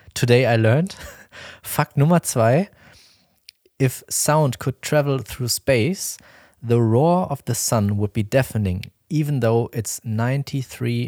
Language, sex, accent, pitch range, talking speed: German, male, German, 105-130 Hz, 130 wpm